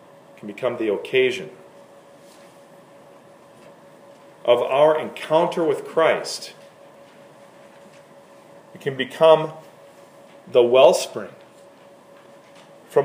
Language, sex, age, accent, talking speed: English, male, 40-59, American, 65 wpm